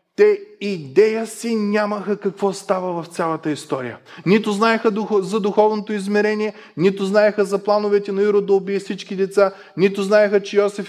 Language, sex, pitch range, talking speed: Bulgarian, male, 150-210 Hz, 155 wpm